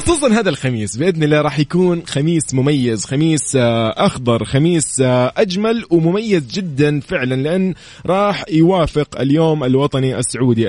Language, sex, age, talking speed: Arabic, male, 20-39, 125 wpm